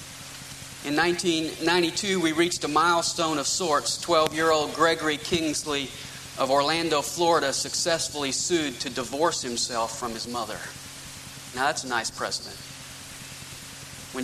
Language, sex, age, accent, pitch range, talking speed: English, male, 40-59, American, 135-165 Hz, 120 wpm